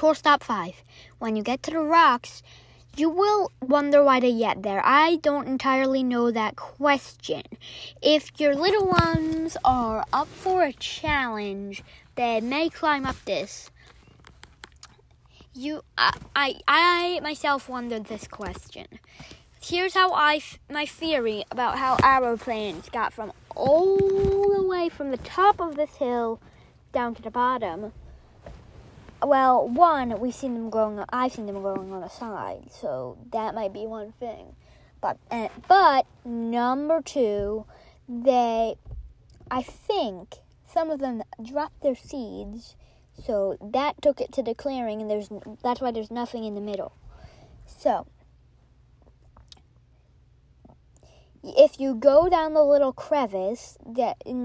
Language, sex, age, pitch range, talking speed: English, female, 20-39, 225-300 Hz, 140 wpm